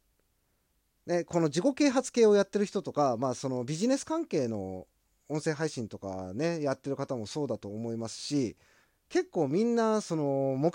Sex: male